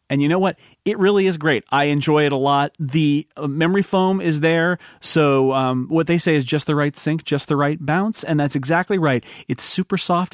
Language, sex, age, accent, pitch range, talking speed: English, male, 40-59, American, 145-195 Hz, 225 wpm